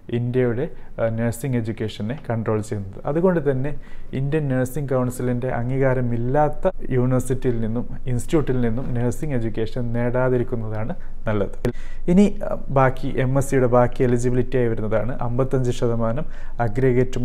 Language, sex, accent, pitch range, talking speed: Malayalam, male, native, 120-135 Hz, 105 wpm